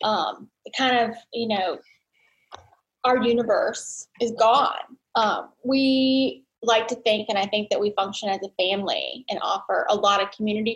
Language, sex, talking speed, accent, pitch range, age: English, female, 160 wpm, American, 200-260 Hz, 10-29